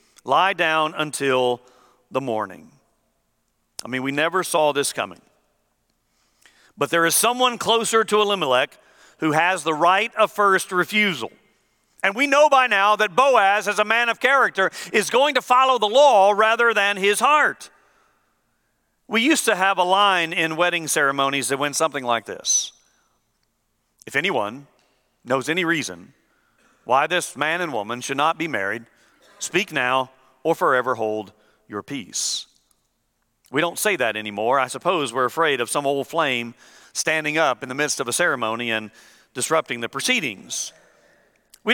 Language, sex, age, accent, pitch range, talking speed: English, male, 50-69, American, 145-235 Hz, 155 wpm